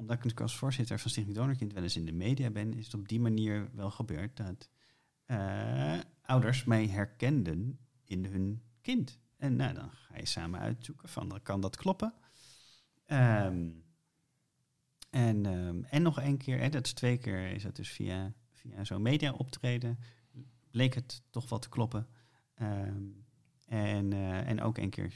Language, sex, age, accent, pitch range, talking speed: Dutch, male, 40-59, Dutch, 100-130 Hz, 170 wpm